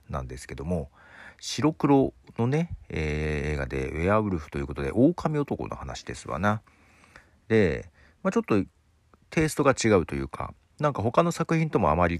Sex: male